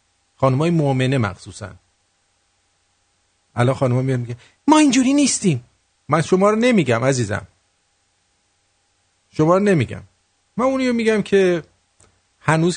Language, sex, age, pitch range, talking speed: English, male, 50-69, 90-135 Hz, 110 wpm